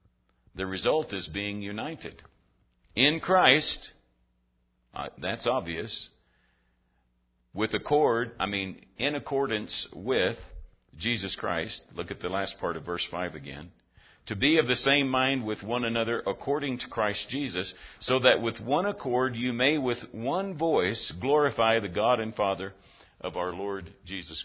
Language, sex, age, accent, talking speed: English, male, 60-79, American, 145 wpm